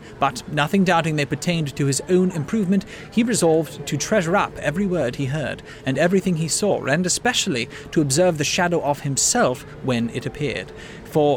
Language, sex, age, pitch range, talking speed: English, male, 40-59, 135-185 Hz, 180 wpm